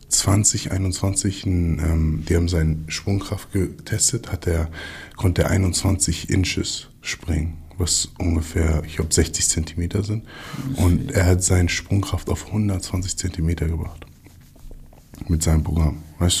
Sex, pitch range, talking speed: male, 80-95 Hz, 120 wpm